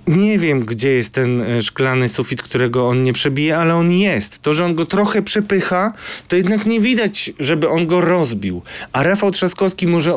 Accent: native